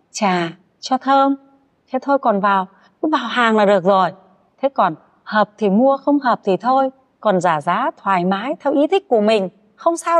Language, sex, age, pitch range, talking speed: Vietnamese, female, 30-49, 185-260 Hz, 200 wpm